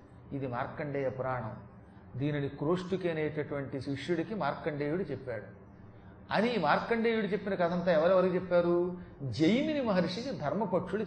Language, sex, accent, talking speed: Telugu, male, native, 100 wpm